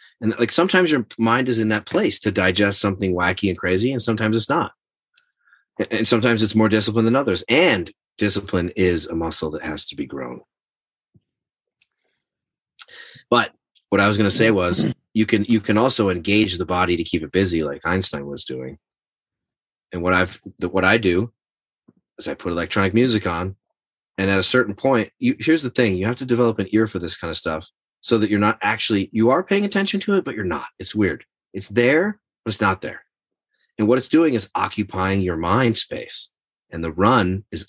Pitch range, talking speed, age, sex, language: 90-110 Hz, 200 wpm, 30-49, male, English